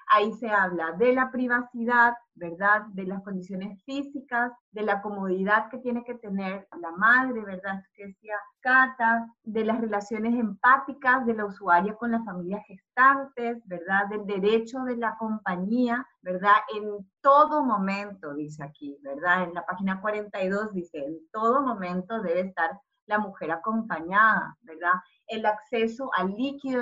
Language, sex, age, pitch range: Spanish, female, 30-49, 195-235 Hz